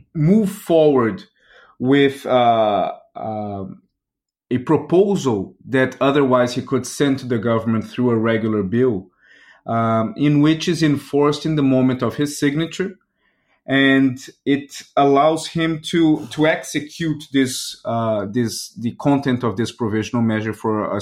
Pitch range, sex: 120-150 Hz, male